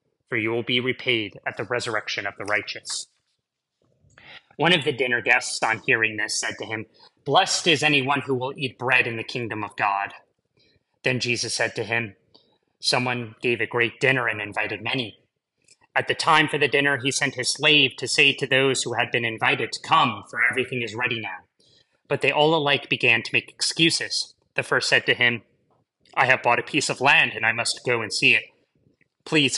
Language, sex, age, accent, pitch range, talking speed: English, male, 30-49, American, 120-145 Hz, 200 wpm